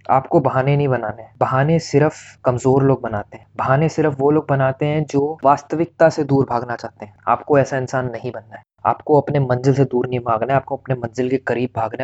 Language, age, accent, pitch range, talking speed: Hindi, 20-39, native, 120-145 Hz, 215 wpm